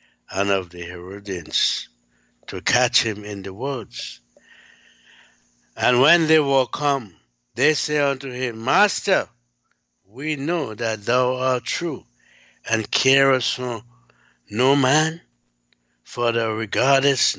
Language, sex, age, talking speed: English, male, 60-79, 115 wpm